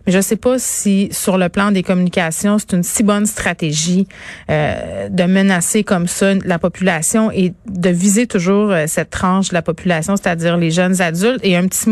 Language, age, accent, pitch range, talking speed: French, 30-49, Canadian, 180-205 Hz, 200 wpm